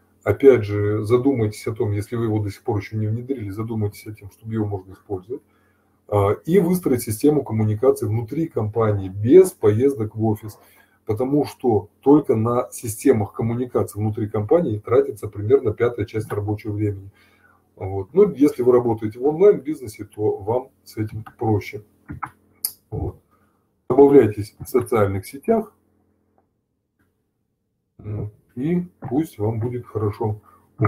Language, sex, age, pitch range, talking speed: Russian, male, 20-39, 105-130 Hz, 130 wpm